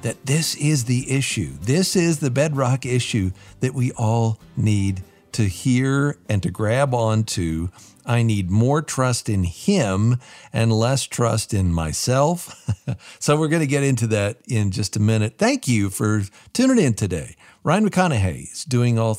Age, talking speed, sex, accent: 50-69, 165 wpm, male, American